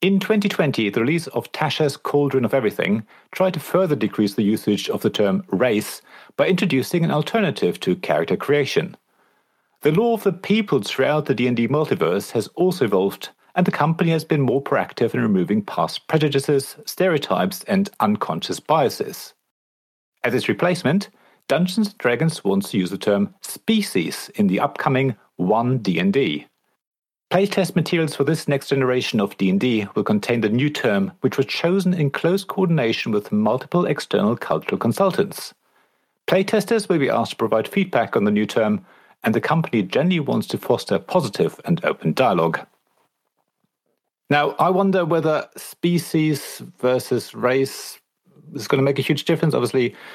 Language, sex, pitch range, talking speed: English, male, 125-185 Hz, 155 wpm